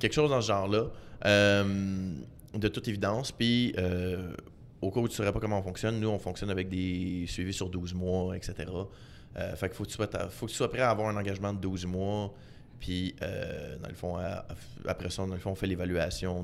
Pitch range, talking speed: 95-110 Hz, 235 wpm